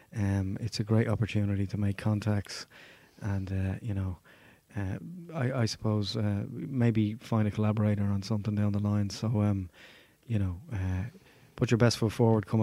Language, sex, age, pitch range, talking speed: English, male, 30-49, 105-125 Hz, 175 wpm